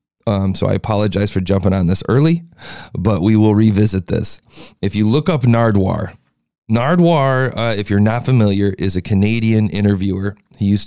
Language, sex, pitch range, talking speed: English, male, 100-120 Hz, 170 wpm